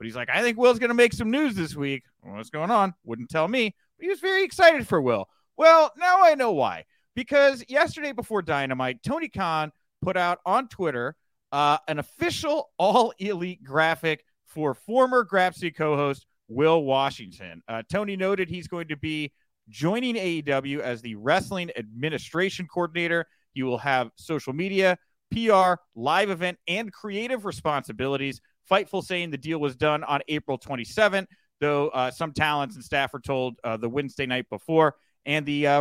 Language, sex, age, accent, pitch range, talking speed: English, male, 30-49, American, 130-190 Hz, 175 wpm